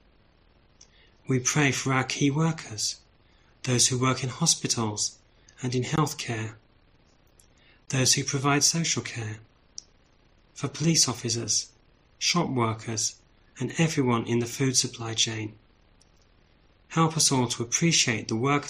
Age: 40-59